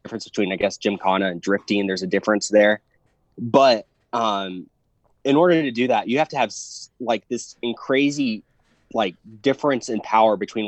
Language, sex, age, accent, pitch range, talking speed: English, male, 20-39, American, 100-130 Hz, 180 wpm